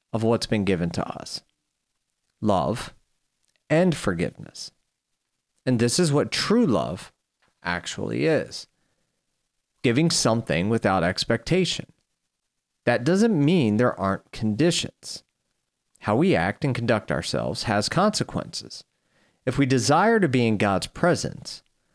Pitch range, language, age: 105-155 Hz, English, 40-59